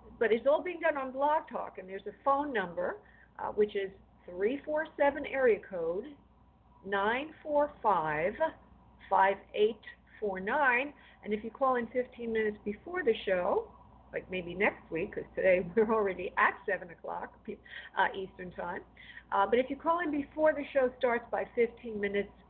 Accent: American